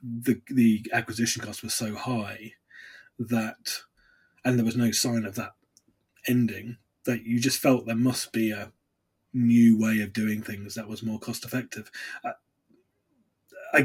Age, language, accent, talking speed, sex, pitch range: 20-39, English, British, 150 wpm, male, 110-125 Hz